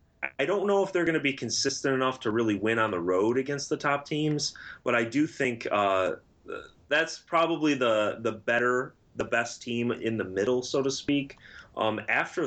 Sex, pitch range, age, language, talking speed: male, 100-140 Hz, 30-49, English, 195 wpm